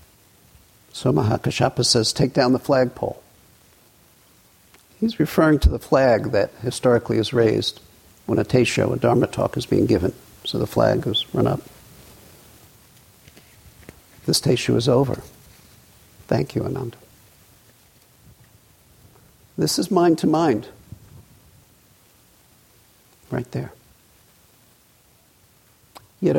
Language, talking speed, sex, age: English, 105 wpm, male, 60-79